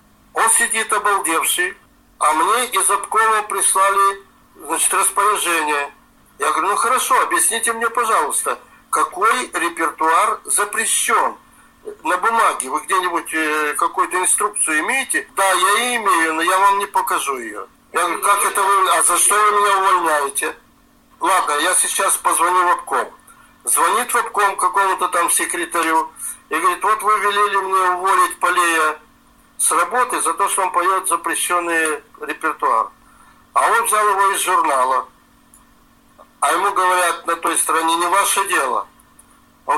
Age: 50-69